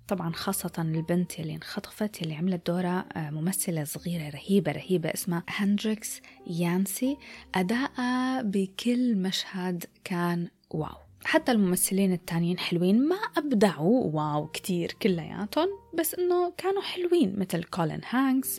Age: 20-39